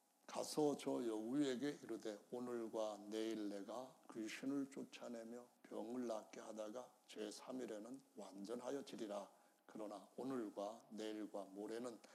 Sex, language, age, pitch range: male, Korean, 60-79, 115-195 Hz